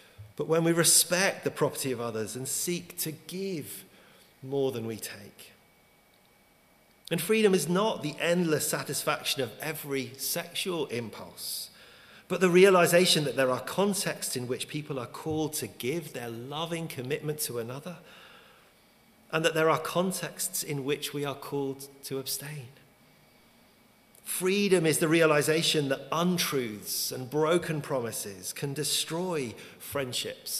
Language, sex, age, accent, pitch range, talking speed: English, male, 40-59, British, 130-170 Hz, 135 wpm